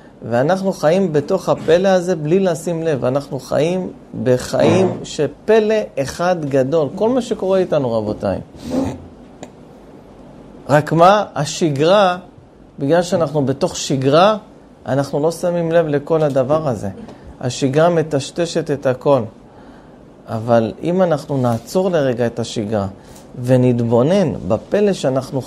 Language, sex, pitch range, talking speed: Hebrew, male, 130-175 Hz, 110 wpm